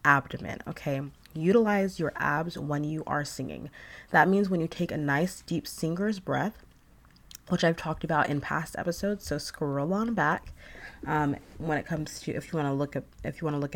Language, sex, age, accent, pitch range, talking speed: English, female, 20-39, American, 140-175 Hz, 200 wpm